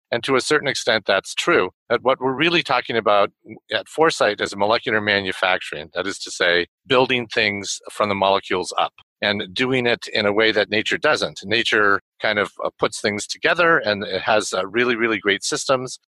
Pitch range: 95-120 Hz